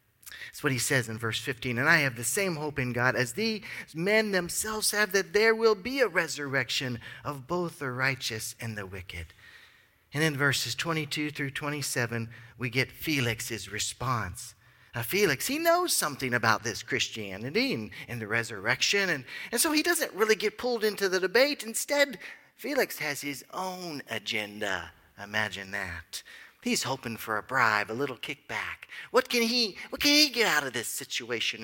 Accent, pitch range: American, 115-195 Hz